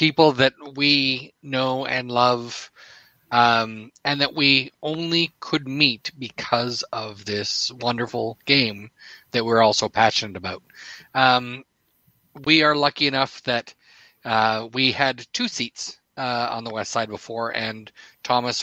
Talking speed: 140 wpm